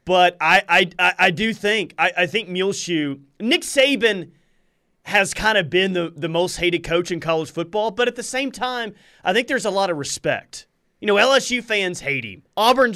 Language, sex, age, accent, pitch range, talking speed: English, male, 30-49, American, 160-215 Hz, 200 wpm